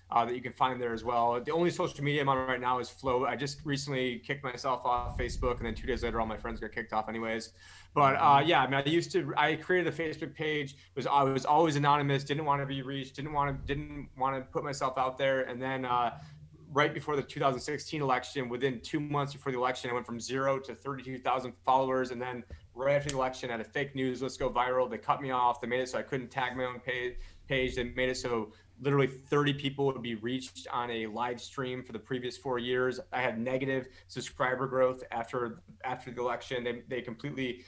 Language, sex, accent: English, male, American